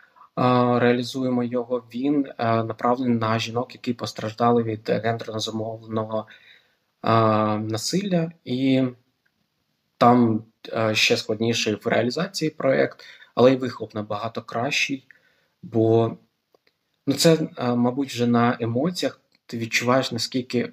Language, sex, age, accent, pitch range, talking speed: Ukrainian, male, 20-39, native, 115-125 Hz, 95 wpm